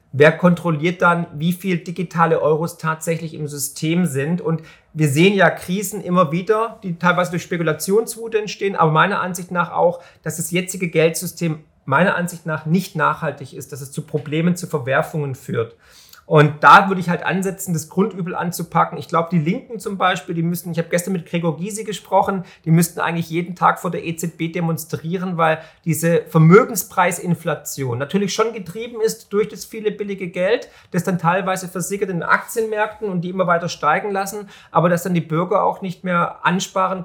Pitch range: 165-190 Hz